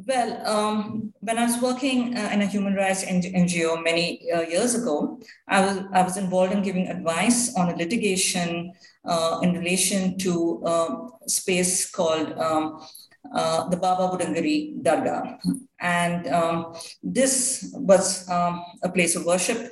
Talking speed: 150 wpm